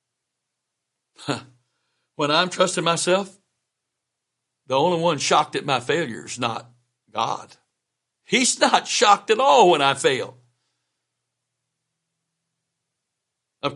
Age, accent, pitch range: 60-79, American, 120-145 Hz